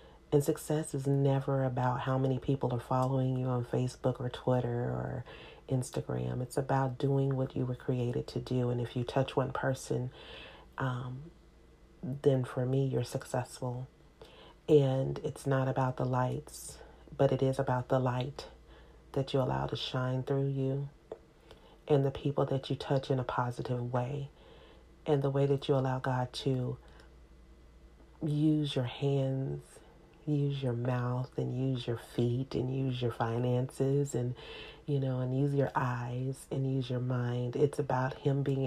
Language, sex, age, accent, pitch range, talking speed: English, female, 40-59, American, 125-140 Hz, 160 wpm